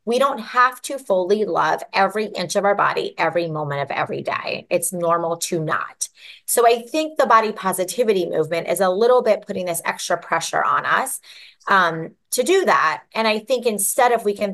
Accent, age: American, 30-49